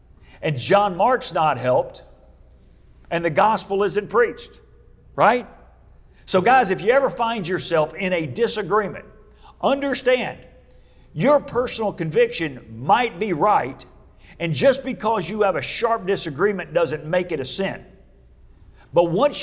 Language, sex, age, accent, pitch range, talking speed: English, male, 50-69, American, 170-240 Hz, 135 wpm